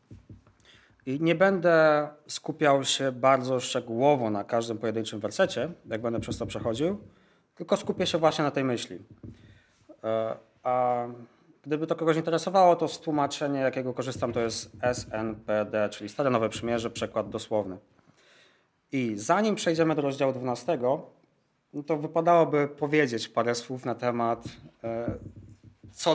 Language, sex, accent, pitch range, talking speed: Polish, male, native, 115-155 Hz, 130 wpm